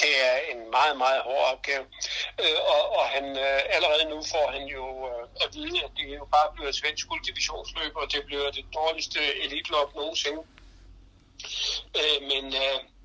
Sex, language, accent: male, Danish, native